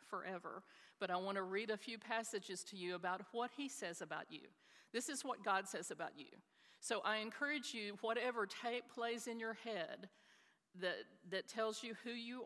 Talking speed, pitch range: 195 wpm, 180-225 Hz